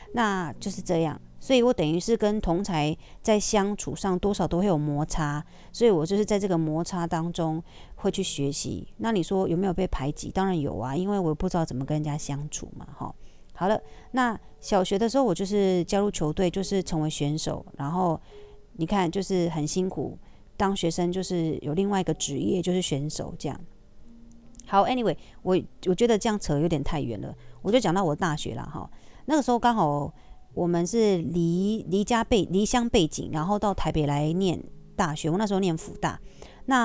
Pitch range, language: 155-200 Hz, Chinese